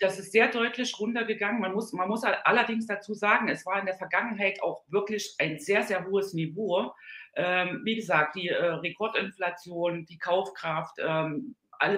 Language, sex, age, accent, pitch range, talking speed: German, female, 40-59, German, 165-220 Hz, 170 wpm